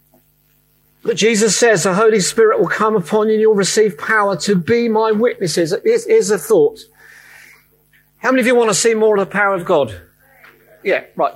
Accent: British